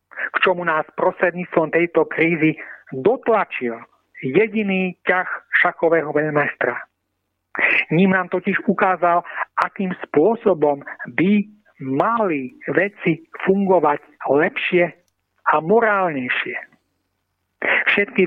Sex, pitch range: male, 145-190 Hz